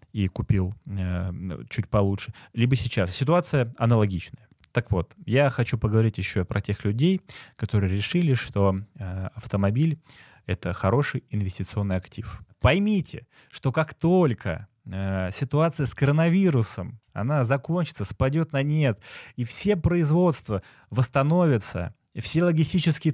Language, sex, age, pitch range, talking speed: Russian, male, 20-39, 105-145 Hz, 120 wpm